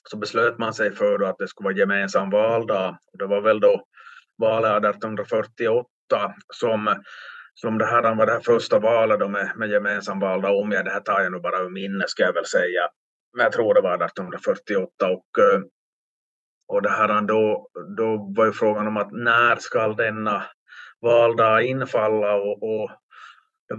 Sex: male